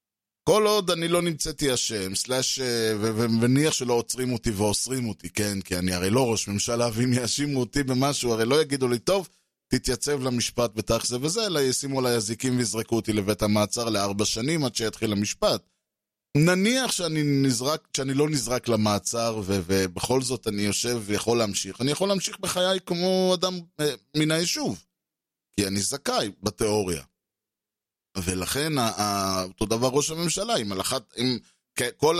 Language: Hebrew